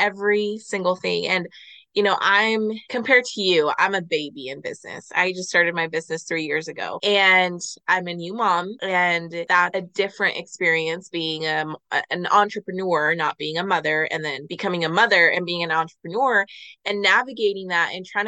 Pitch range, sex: 170-210 Hz, female